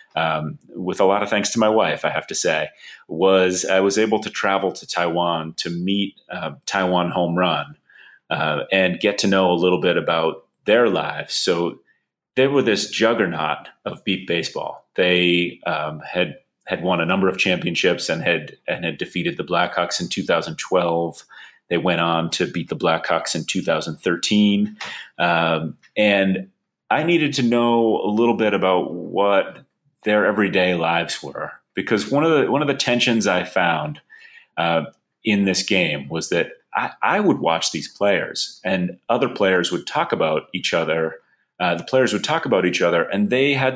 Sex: male